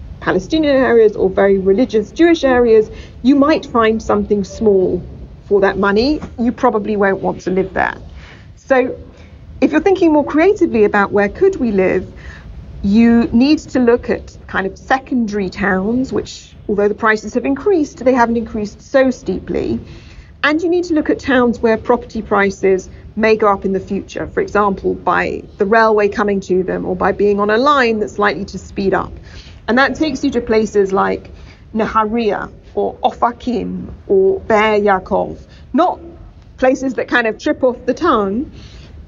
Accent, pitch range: British, 200-265 Hz